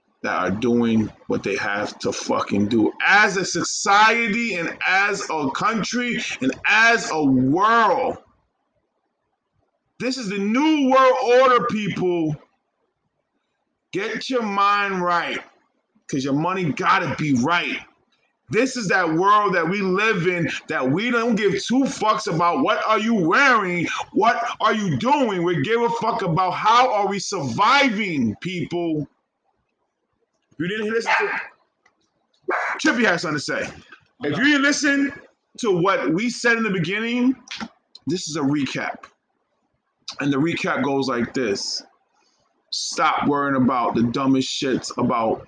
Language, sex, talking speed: English, male, 145 wpm